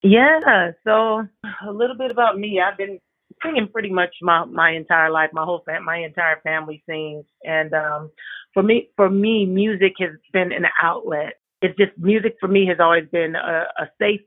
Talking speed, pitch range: 190 wpm, 165-200 Hz